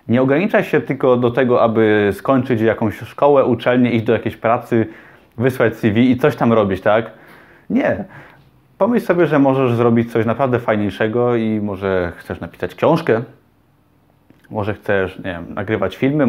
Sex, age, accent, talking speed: male, 20-39, native, 155 wpm